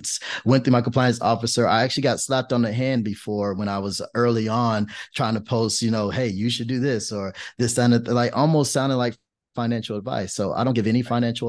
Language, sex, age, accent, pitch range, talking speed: English, male, 30-49, American, 105-120 Hz, 225 wpm